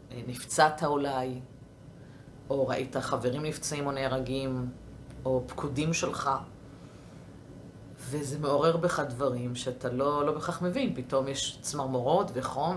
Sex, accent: female, native